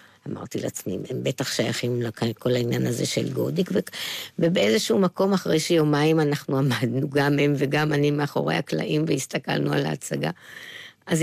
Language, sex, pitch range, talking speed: Hebrew, female, 125-175 Hz, 140 wpm